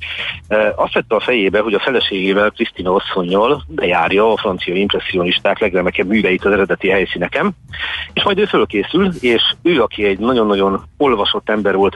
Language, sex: Hungarian, male